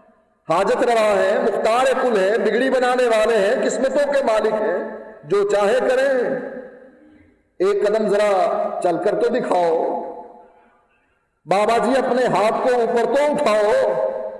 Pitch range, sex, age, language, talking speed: 220-295 Hz, male, 50-69, Urdu, 135 wpm